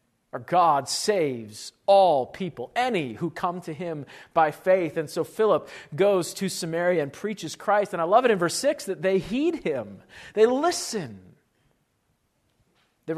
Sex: male